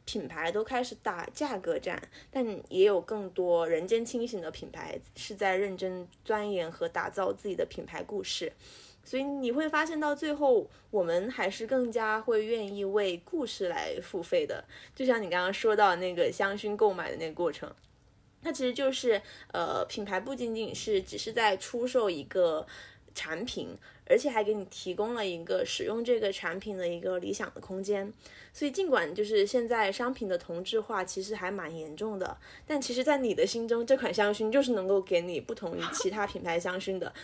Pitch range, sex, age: 200-305 Hz, female, 20-39